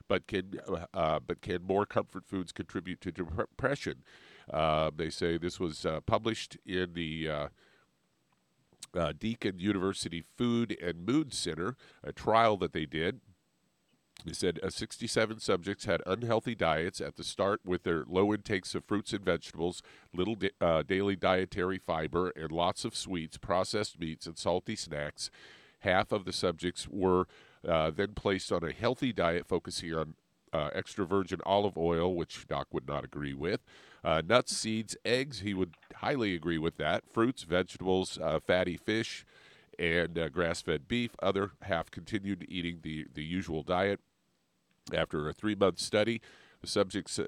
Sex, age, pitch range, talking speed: male, 50-69, 85-100 Hz, 155 wpm